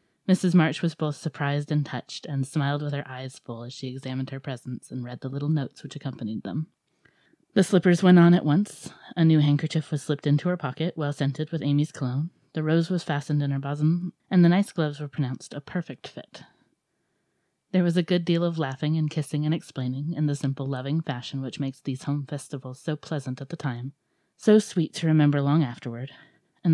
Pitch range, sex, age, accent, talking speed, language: 130-165 Hz, female, 30-49, American, 210 wpm, English